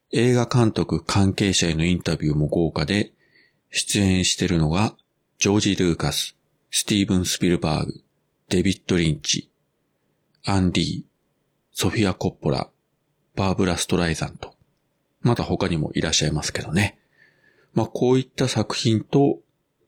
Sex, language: male, Japanese